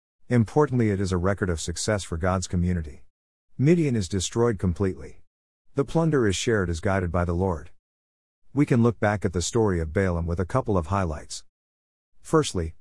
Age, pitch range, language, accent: 50-69, 85-115 Hz, English, American